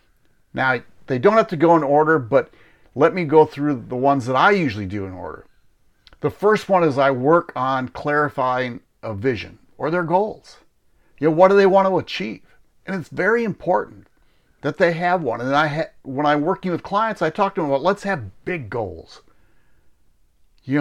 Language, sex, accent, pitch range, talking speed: English, male, American, 95-165 Hz, 195 wpm